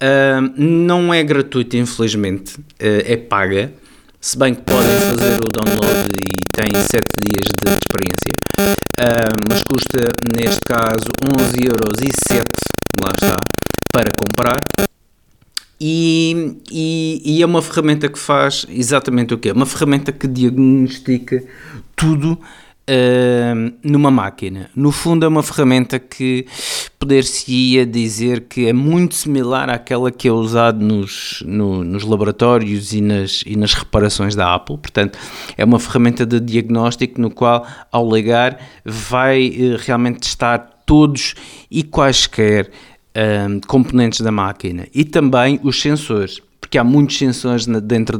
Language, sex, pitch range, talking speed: Portuguese, male, 110-135 Hz, 125 wpm